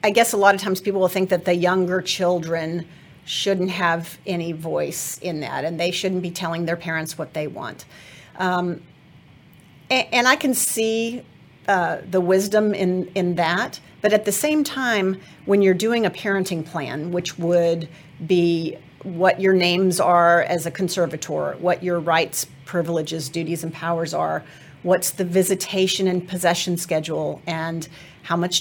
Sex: female